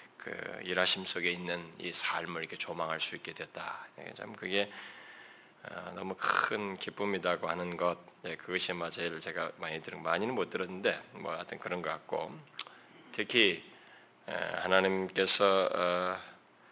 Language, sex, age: Korean, male, 20-39